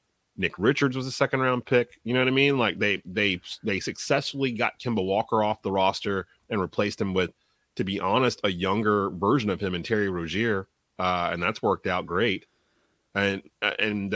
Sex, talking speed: male, 190 wpm